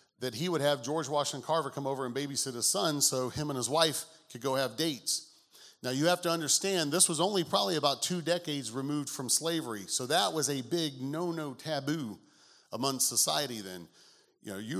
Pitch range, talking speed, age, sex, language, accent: 125-160 Hz, 205 wpm, 40-59, male, English, American